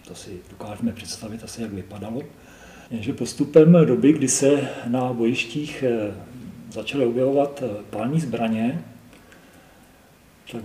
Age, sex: 40-59, male